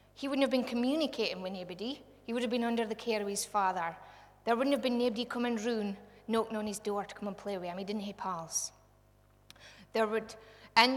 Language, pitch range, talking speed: English, 175-225 Hz, 230 wpm